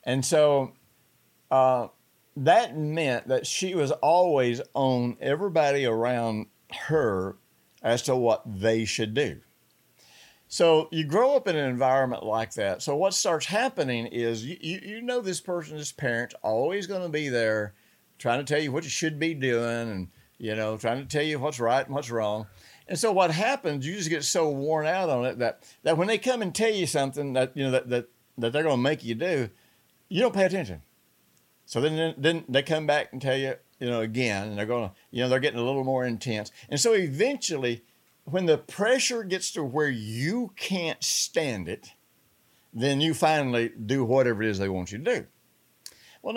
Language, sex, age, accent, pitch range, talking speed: English, male, 50-69, American, 115-160 Hz, 200 wpm